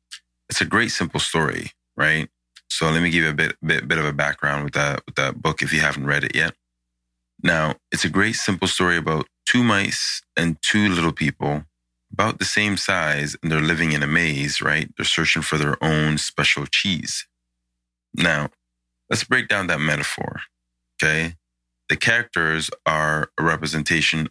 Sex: male